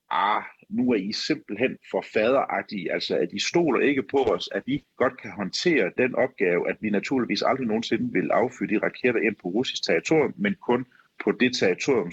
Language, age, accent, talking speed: Danish, 40-59, native, 195 wpm